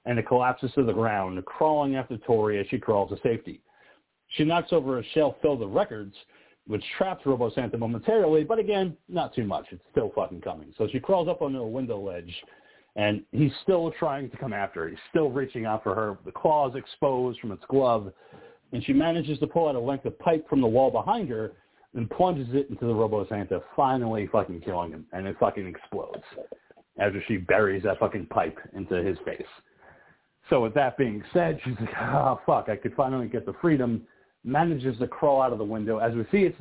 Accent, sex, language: American, male, English